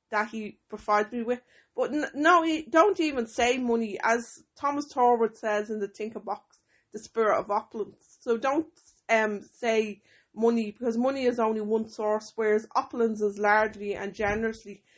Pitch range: 205-235 Hz